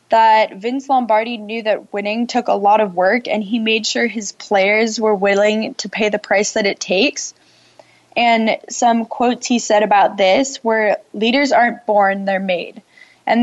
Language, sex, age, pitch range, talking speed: English, female, 10-29, 205-245 Hz, 180 wpm